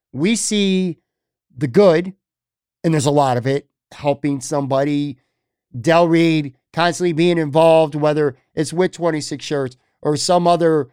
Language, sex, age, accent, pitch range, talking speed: English, male, 50-69, American, 140-180 Hz, 135 wpm